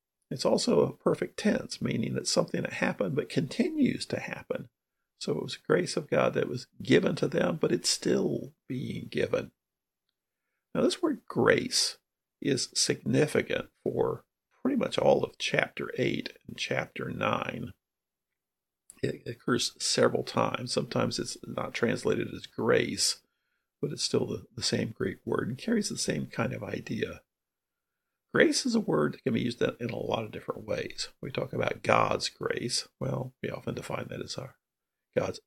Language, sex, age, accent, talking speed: English, male, 50-69, American, 160 wpm